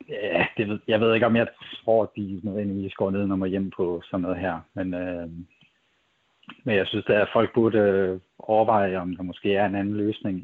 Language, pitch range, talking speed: Danish, 90-105 Hz, 215 wpm